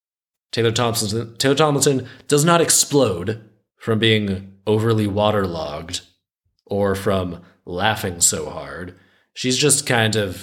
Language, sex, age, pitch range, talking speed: English, male, 20-39, 95-120 Hz, 115 wpm